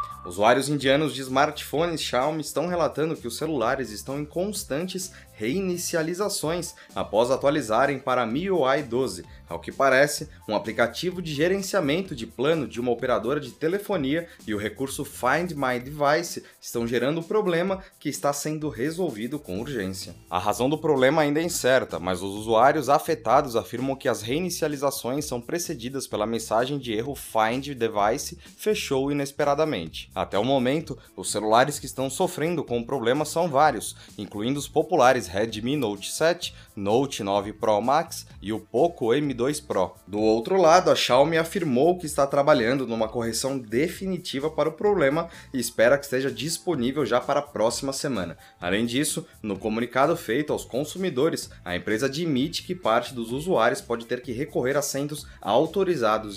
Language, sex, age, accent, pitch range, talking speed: Portuguese, male, 20-39, Brazilian, 115-160 Hz, 160 wpm